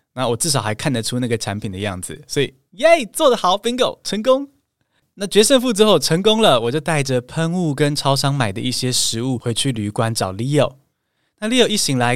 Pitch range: 115-165 Hz